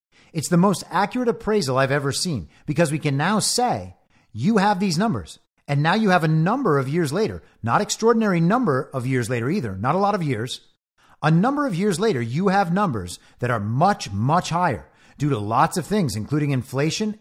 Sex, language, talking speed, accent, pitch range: male, English, 200 wpm, American, 130-185 Hz